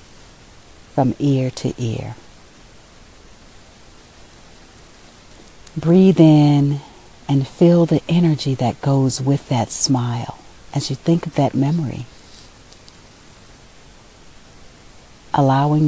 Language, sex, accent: English, female, American